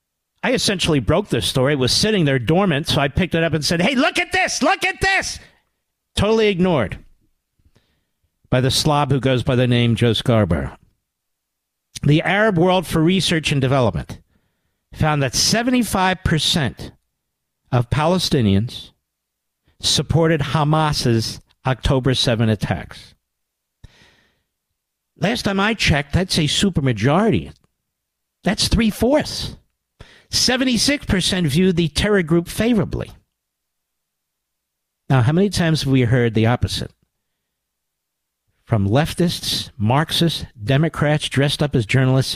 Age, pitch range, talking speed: 50-69, 125-185 Hz, 120 wpm